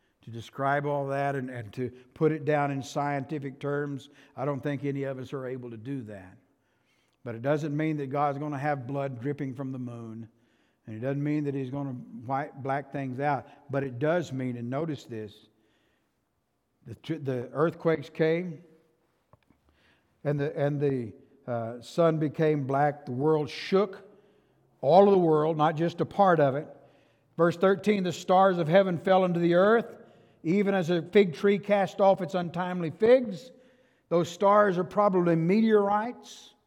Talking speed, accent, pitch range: 175 wpm, American, 135-195 Hz